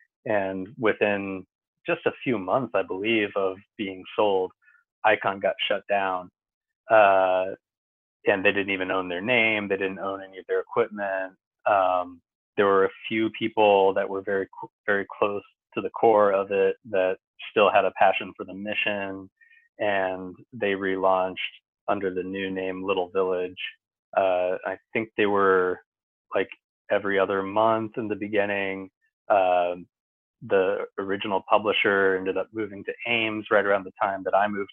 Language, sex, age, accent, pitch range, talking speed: English, male, 30-49, American, 95-105 Hz, 155 wpm